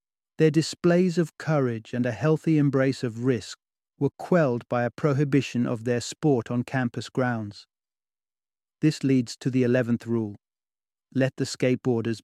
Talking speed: 145 wpm